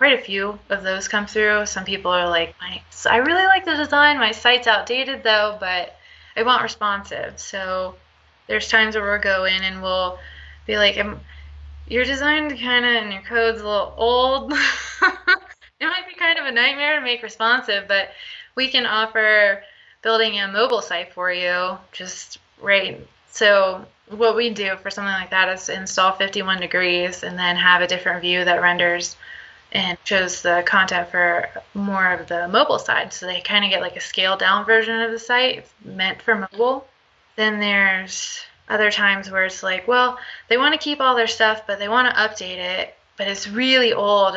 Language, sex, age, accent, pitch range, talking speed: English, female, 20-39, American, 185-225 Hz, 185 wpm